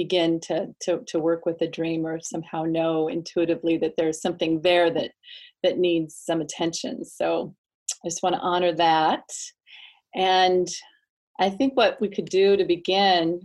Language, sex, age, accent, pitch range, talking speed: English, female, 30-49, American, 165-190 Hz, 165 wpm